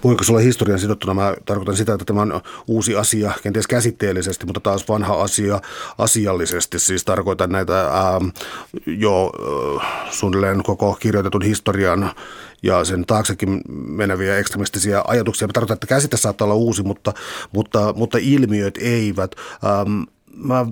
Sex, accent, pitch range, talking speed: male, native, 100-120 Hz, 140 wpm